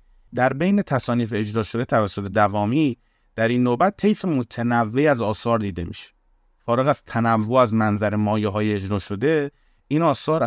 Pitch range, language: 105-125 Hz, Persian